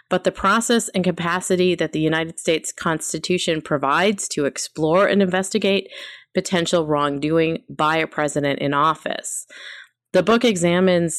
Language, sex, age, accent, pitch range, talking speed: English, female, 30-49, American, 150-180 Hz, 135 wpm